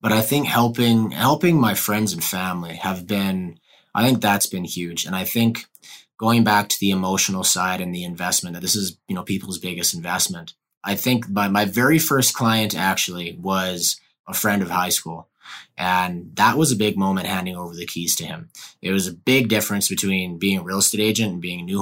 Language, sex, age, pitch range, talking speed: English, male, 30-49, 90-110 Hz, 210 wpm